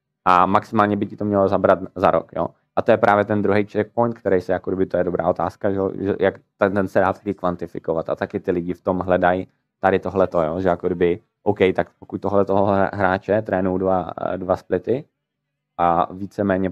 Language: Czech